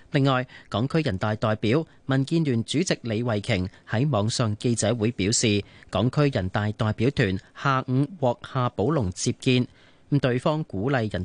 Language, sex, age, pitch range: Chinese, male, 30-49, 110-140 Hz